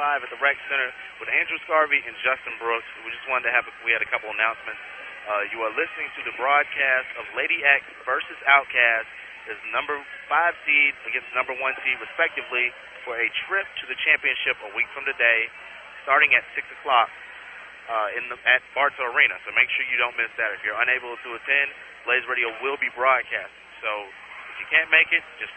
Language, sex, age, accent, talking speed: English, male, 30-49, American, 205 wpm